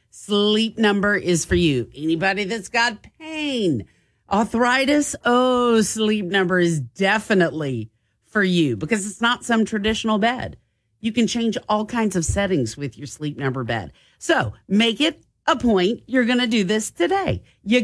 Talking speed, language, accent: 160 wpm, English, American